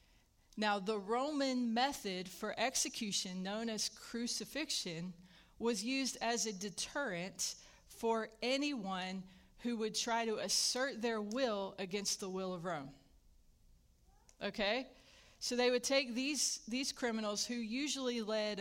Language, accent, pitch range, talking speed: English, American, 190-235 Hz, 125 wpm